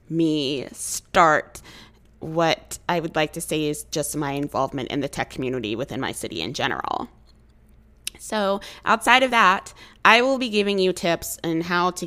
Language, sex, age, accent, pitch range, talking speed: English, female, 20-39, American, 150-185 Hz, 170 wpm